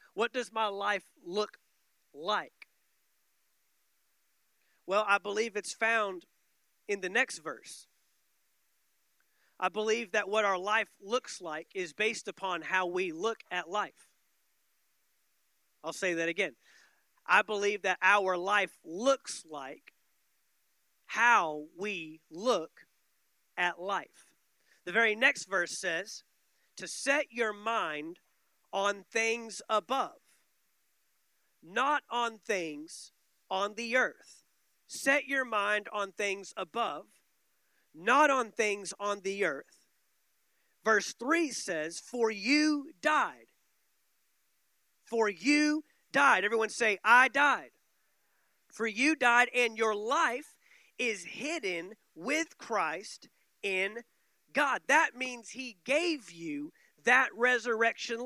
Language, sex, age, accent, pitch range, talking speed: English, male, 40-59, American, 200-265 Hz, 110 wpm